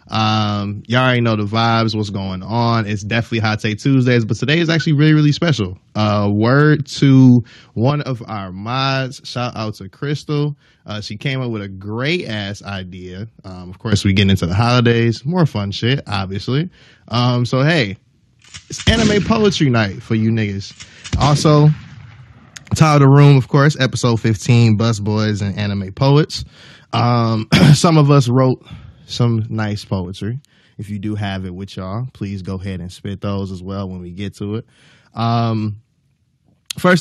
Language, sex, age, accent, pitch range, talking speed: English, male, 20-39, American, 100-135 Hz, 170 wpm